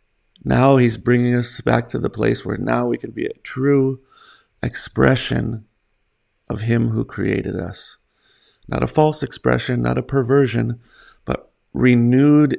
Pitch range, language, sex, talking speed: 110-130 Hz, English, male, 145 wpm